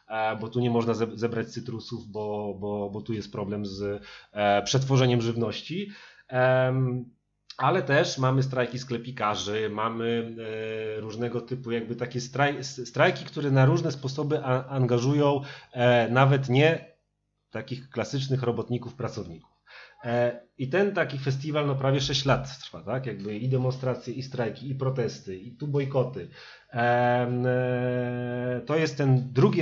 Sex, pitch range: male, 110-130 Hz